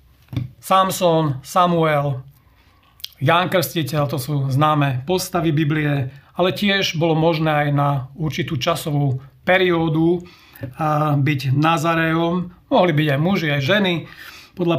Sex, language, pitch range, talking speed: male, Slovak, 145-170 Hz, 110 wpm